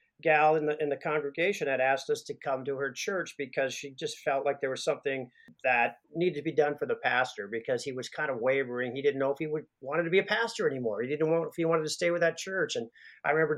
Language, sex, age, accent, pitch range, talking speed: English, male, 50-69, American, 140-185 Hz, 275 wpm